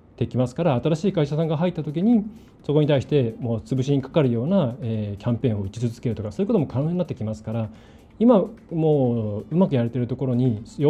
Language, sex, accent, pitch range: Japanese, male, native, 120-185 Hz